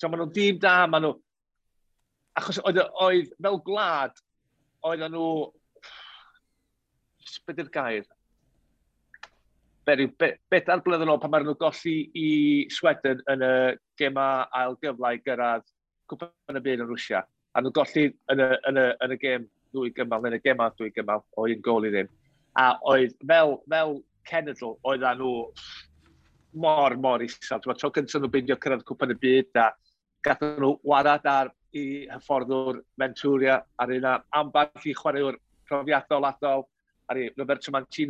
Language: English